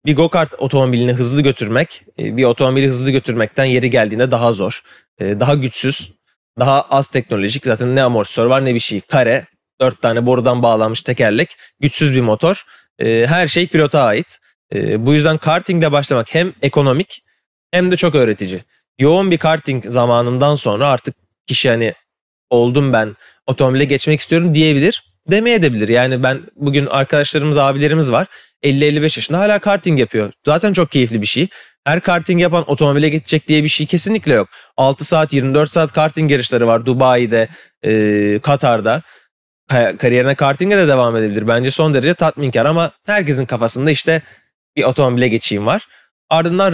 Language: Turkish